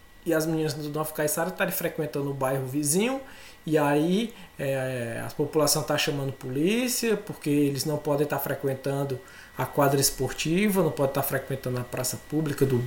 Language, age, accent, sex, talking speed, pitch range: Portuguese, 20-39, Brazilian, male, 180 wpm, 150-200 Hz